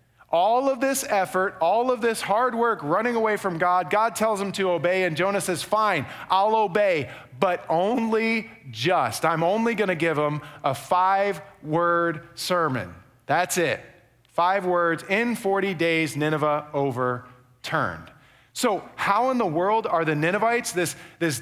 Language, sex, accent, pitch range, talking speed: English, male, American, 150-210 Hz, 150 wpm